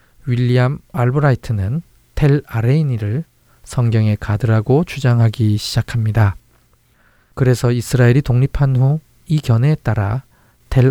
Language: Korean